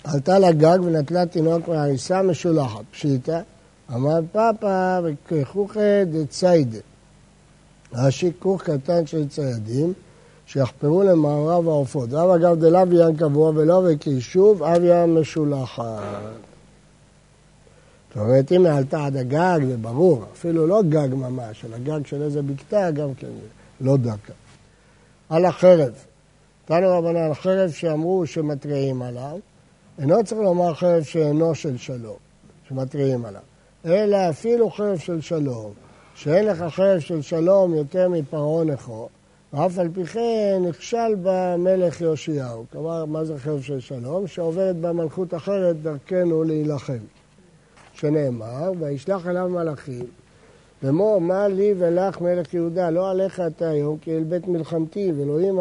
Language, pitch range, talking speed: Hebrew, 145-180 Hz, 125 wpm